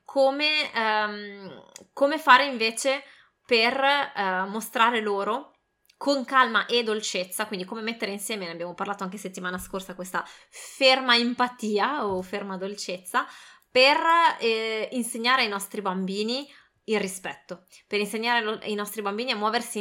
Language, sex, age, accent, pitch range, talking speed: Italian, female, 20-39, native, 185-245 Hz, 125 wpm